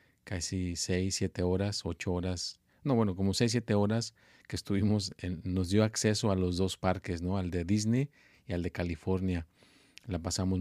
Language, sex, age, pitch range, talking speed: Spanish, male, 40-59, 90-100 Hz, 180 wpm